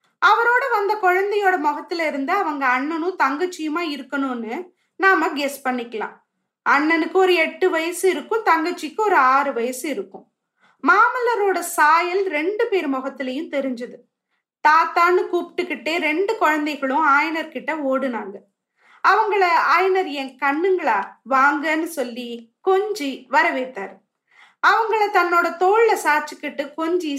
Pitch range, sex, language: 275-370 Hz, female, Tamil